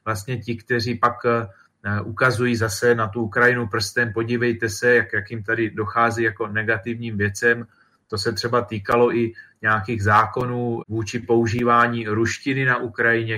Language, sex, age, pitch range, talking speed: Slovak, male, 30-49, 110-120 Hz, 145 wpm